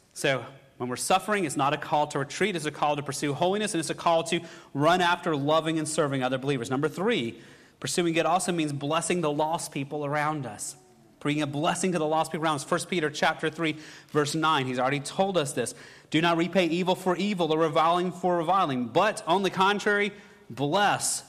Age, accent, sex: 30-49, American, male